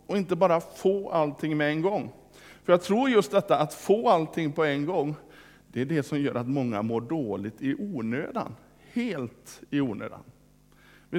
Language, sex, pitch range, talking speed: Swedish, male, 140-190 Hz, 180 wpm